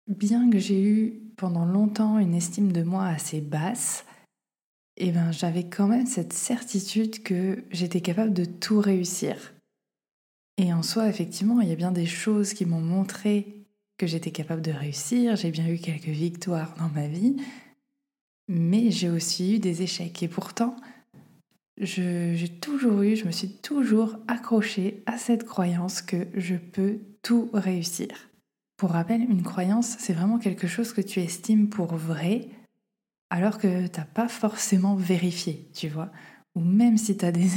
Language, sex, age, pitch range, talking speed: French, female, 20-39, 180-215 Hz, 165 wpm